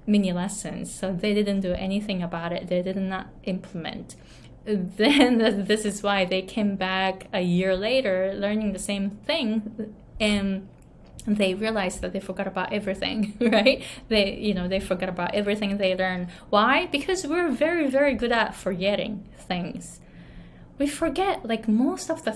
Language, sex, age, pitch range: Japanese, female, 20-39, 185-225 Hz